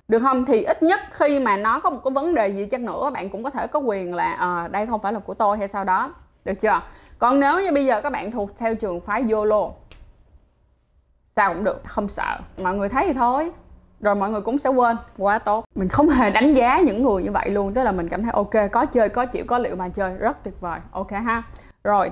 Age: 20-39